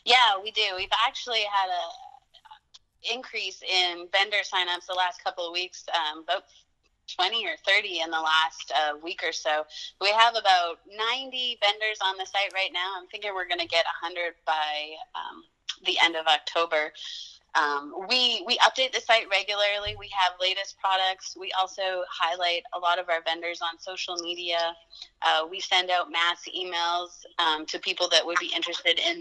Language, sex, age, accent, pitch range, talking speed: English, female, 30-49, American, 165-200 Hz, 180 wpm